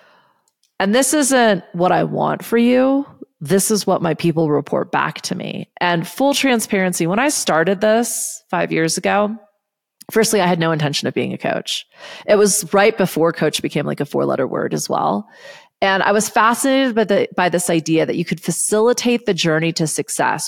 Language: English